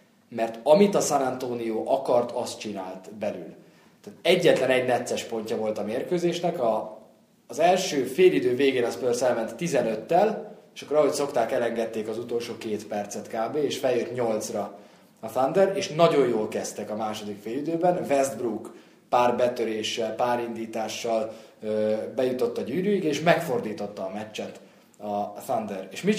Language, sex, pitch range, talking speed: Hungarian, male, 110-140 Hz, 145 wpm